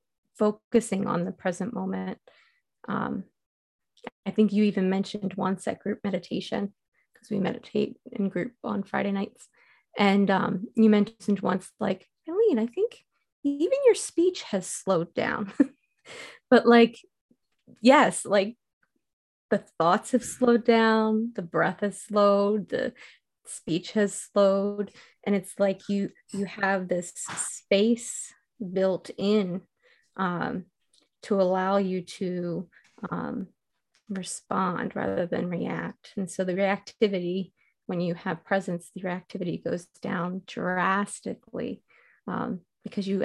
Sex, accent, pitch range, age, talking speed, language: female, American, 185-220 Hz, 20-39, 125 wpm, English